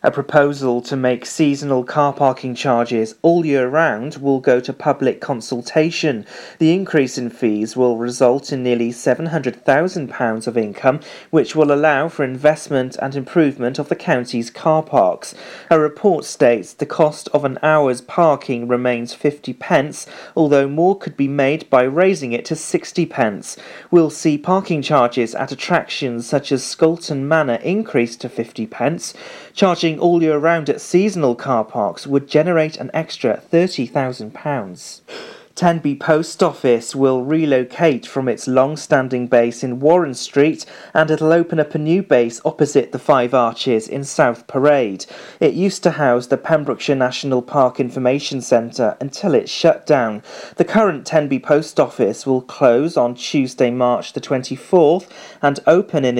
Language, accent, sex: English, British, male